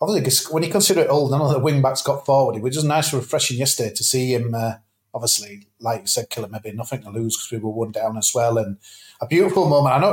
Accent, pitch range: British, 120-150 Hz